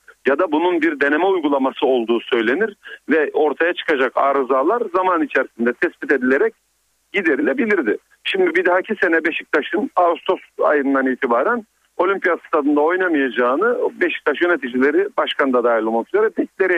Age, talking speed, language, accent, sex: 50-69, 130 wpm, Turkish, native, male